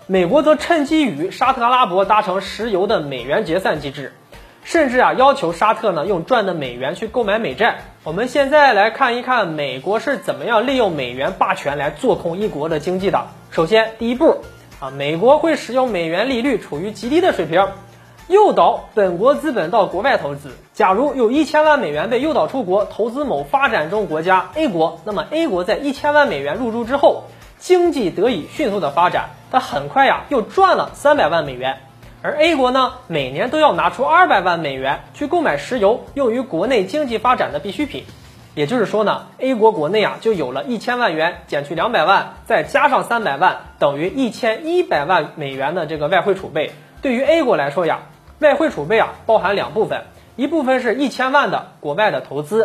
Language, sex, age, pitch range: Chinese, male, 20-39, 175-285 Hz